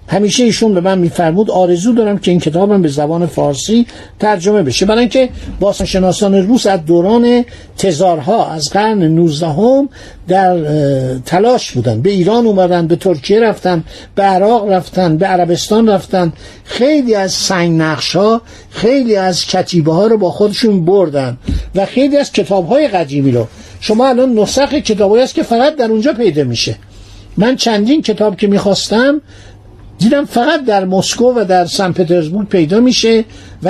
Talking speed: 150 wpm